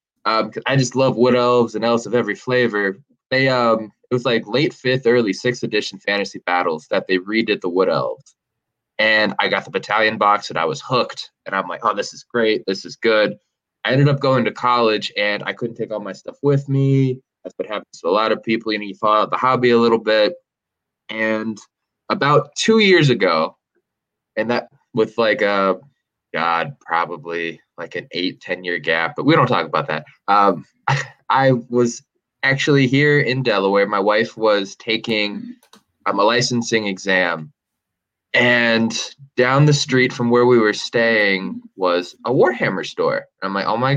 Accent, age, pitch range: American, 20-39, 105-130 Hz